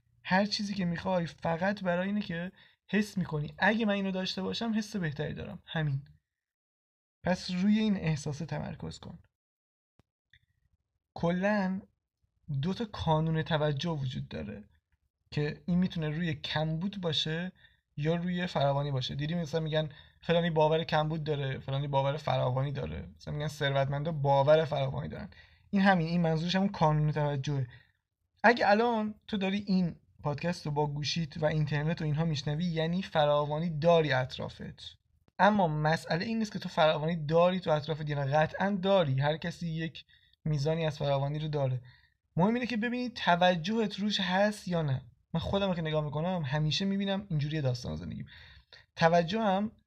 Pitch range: 150-185 Hz